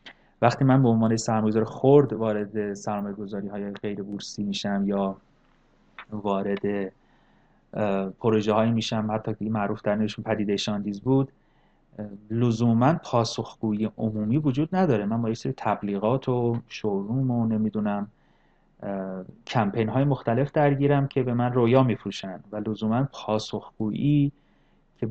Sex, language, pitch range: male, Persian, 105-125 Hz